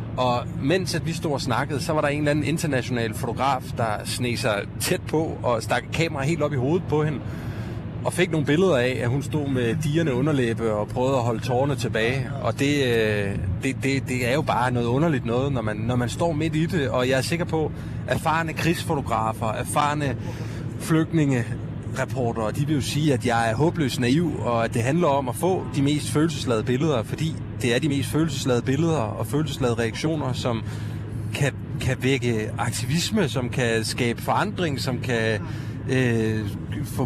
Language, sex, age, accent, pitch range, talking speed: Danish, male, 30-49, native, 115-150 Hz, 190 wpm